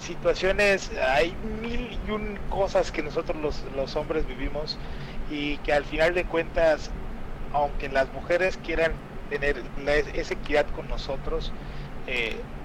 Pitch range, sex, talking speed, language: 140-180 Hz, male, 140 wpm, Spanish